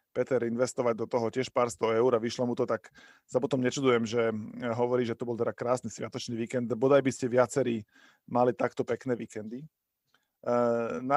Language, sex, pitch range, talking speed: Slovak, male, 120-135 Hz, 185 wpm